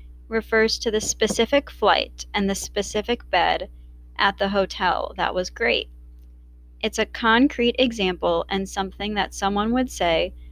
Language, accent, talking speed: English, American, 145 wpm